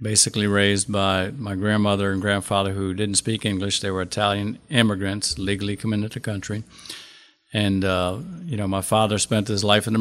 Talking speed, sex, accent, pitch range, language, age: 185 wpm, male, American, 95-110 Hz, English, 50-69